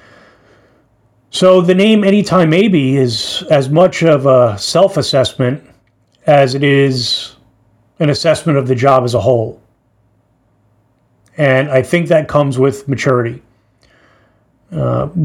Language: English